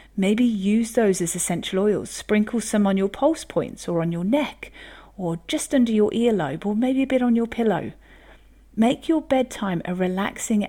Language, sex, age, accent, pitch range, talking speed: English, female, 40-59, British, 180-230 Hz, 185 wpm